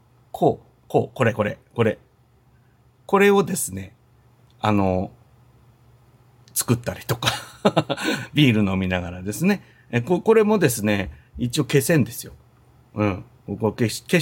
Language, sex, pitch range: Japanese, male, 105-130 Hz